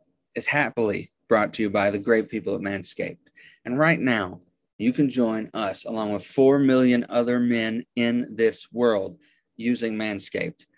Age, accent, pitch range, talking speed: 30-49, American, 110-140 Hz, 160 wpm